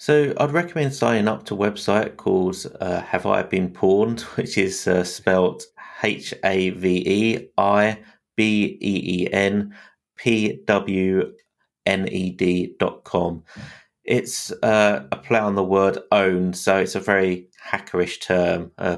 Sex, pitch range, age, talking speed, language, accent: male, 90-100 Hz, 30-49, 155 wpm, English, British